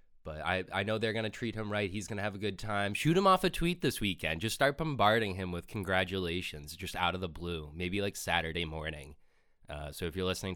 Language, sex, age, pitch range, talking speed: English, male, 20-39, 80-105 Hz, 250 wpm